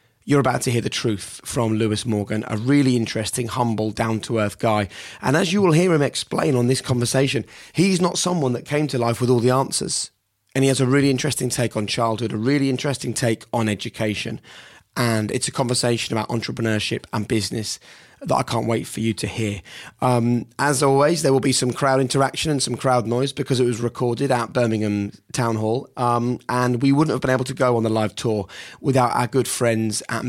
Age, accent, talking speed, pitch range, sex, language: 30-49, British, 210 wpm, 110-130 Hz, male, English